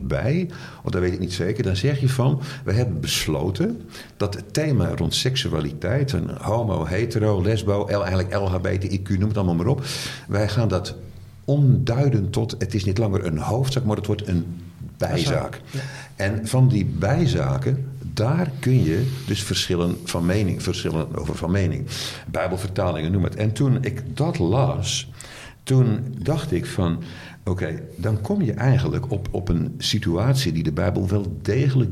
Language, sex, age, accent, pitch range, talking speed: Dutch, male, 50-69, Dutch, 90-130 Hz, 165 wpm